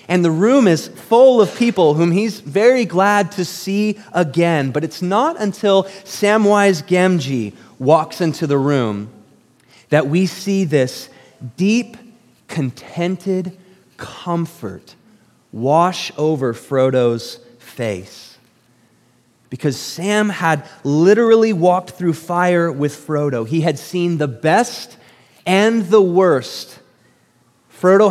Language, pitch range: English, 150-195 Hz